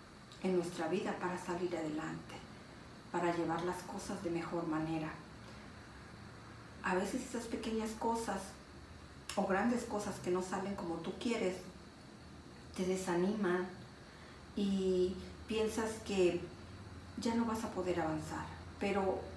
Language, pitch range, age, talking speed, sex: Spanish, 175-220 Hz, 50-69, 120 wpm, female